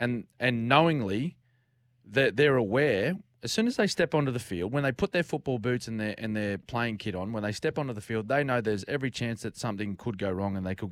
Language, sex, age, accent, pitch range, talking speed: English, male, 20-39, Australian, 100-125 Hz, 260 wpm